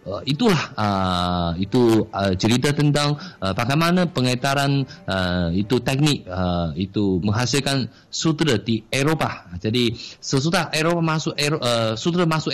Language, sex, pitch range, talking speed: Malay, male, 105-150 Hz, 125 wpm